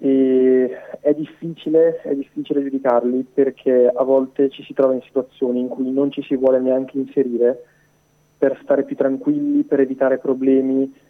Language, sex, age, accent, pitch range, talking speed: Italian, male, 20-39, native, 125-140 Hz, 155 wpm